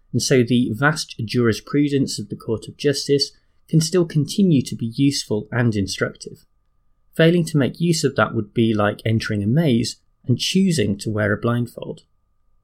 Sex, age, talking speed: male, 20-39, 170 wpm